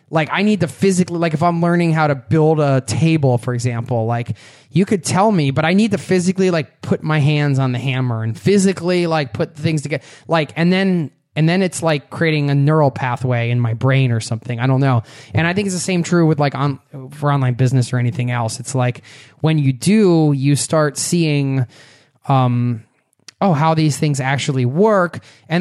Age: 20-39